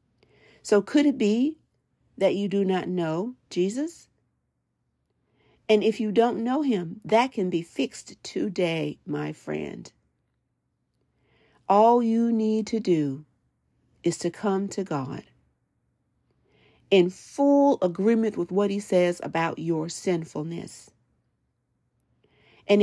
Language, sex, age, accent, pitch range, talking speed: English, female, 50-69, American, 170-215 Hz, 115 wpm